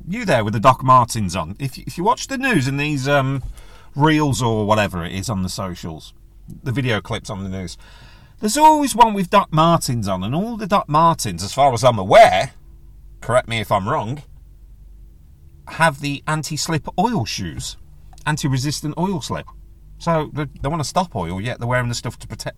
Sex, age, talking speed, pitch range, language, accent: male, 40-59, 200 wpm, 95-150 Hz, English, British